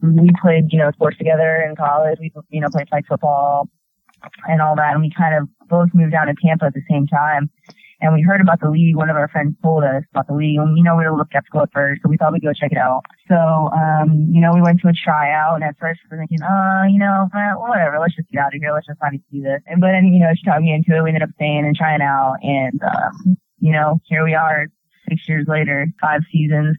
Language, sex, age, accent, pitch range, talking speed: English, female, 20-39, American, 150-170 Hz, 285 wpm